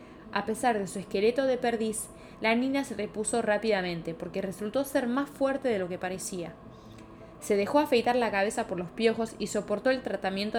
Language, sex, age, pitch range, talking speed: English, female, 20-39, 190-230 Hz, 185 wpm